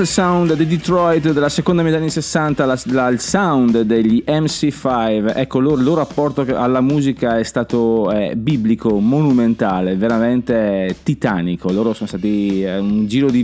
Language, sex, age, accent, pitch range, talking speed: Italian, male, 30-49, native, 115-155 Hz, 150 wpm